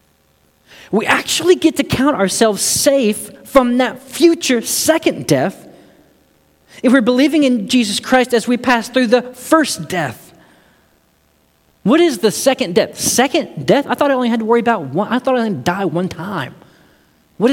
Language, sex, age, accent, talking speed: English, male, 40-59, American, 175 wpm